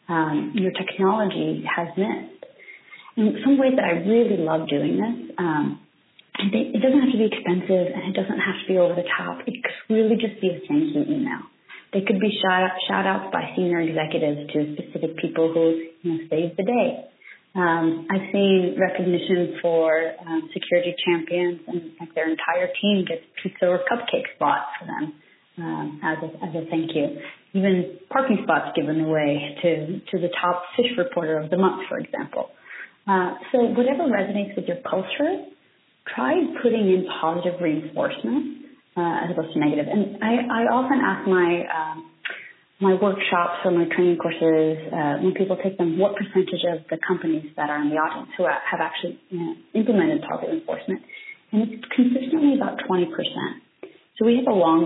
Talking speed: 180 wpm